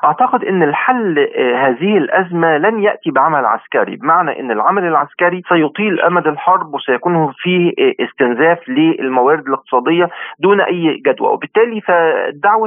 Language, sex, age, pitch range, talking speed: Arabic, male, 40-59, 155-225 Hz, 125 wpm